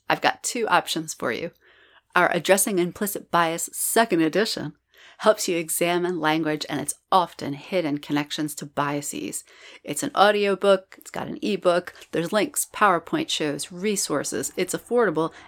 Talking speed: 145 wpm